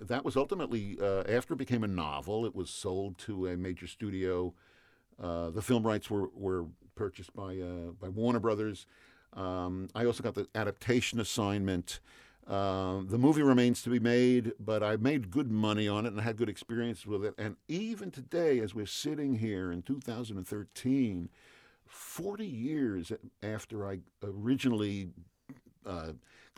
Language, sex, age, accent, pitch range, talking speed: English, male, 50-69, American, 95-120 Hz, 160 wpm